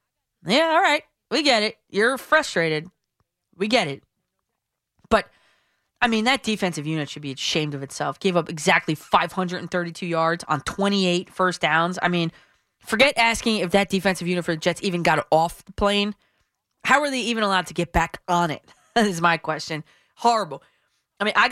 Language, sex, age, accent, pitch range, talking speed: English, female, 20-39, American, 170-225 Hz, 180 wpm